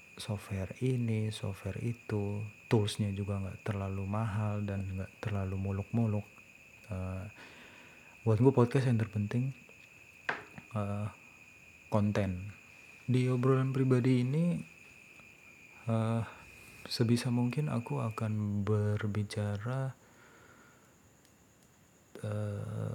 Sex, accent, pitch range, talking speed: male, native, 100-115 Hz, 85 wpm